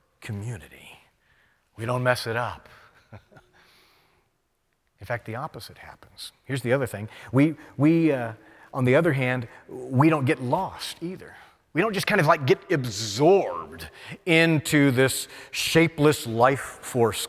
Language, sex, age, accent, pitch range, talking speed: English, male, 40-59, American, 105-140 Hz, 140 wpm